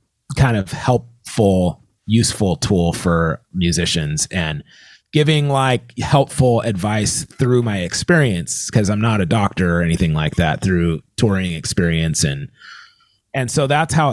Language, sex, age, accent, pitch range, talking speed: English, male, 30-49, American, 100-145 Hz, 135 wpm